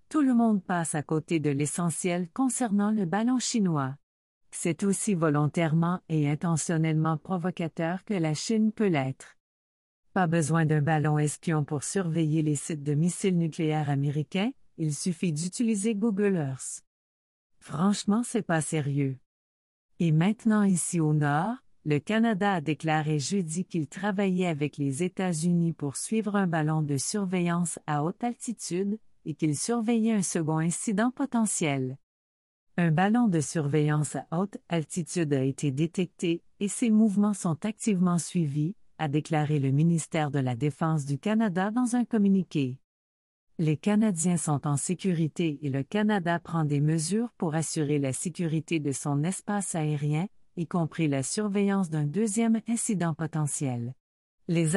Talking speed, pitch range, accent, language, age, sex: 150 wpm, 150-200 Hz, Canadian, French, 50-69, female